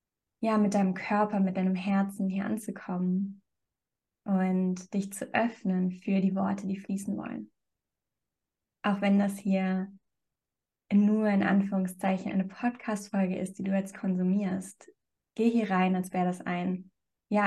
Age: 20-39